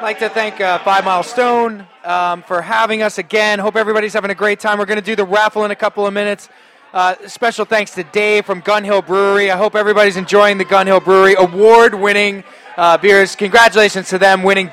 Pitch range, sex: 190-220 Hz, male